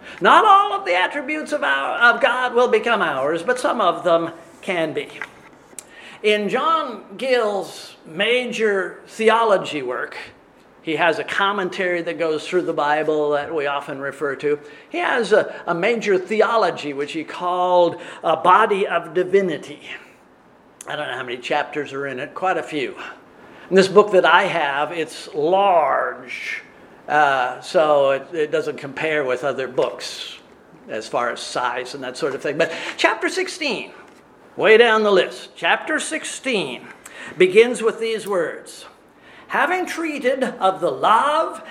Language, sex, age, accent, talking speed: English, male, 50-69, American, 155 wpm